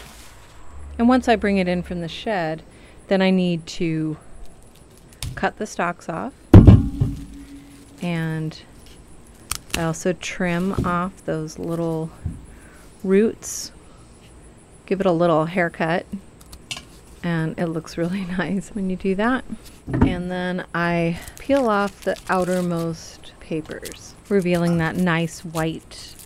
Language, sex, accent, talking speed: English, female, American, 115 wpm